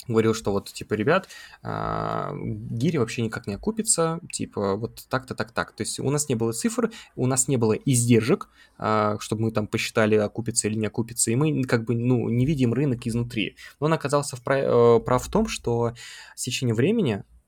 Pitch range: 115-140 Hz